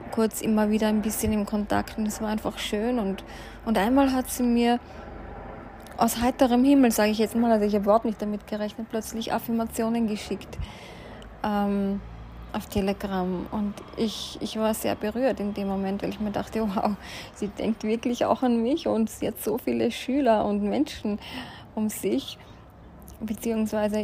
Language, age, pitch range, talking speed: German, 20-39, 200-225 Hz, 170 wpm